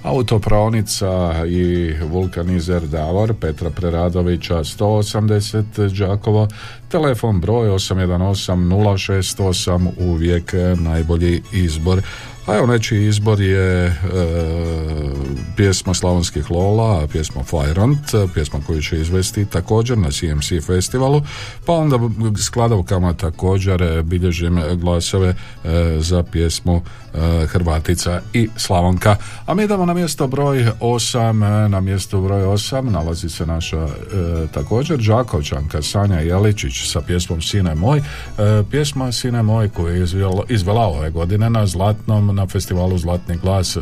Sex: male